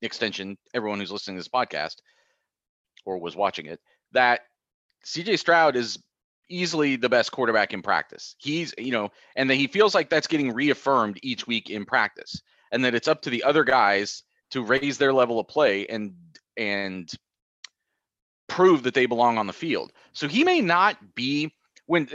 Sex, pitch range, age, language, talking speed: male, 105-135 Hz, 30-49, English, 175 wpm